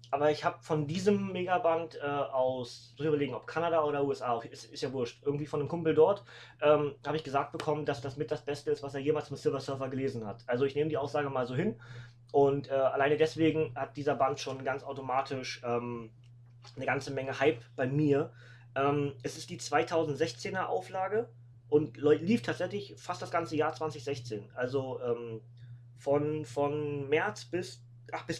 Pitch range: 120-155 Hz